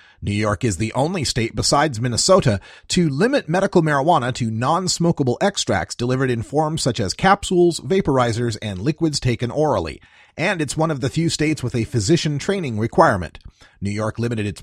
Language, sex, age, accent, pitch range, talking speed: English, male, 40-59, American, 110-160 Hz, 170 wpm